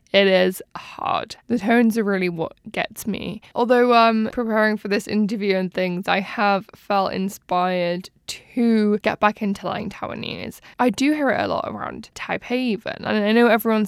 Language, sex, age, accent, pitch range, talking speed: English, female, 10-29, British, 195-230 Hz, 175 wpm